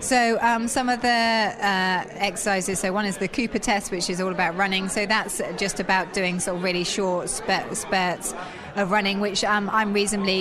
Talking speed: 195 wpm